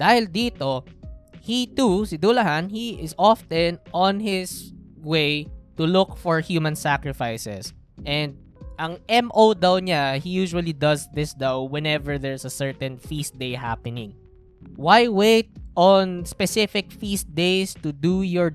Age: 20-39